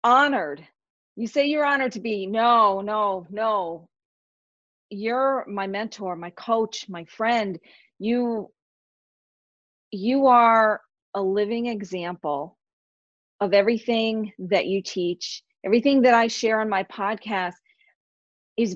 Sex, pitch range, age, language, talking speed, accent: female, 195-240 Hz, 40-59, English, 115 wpm, American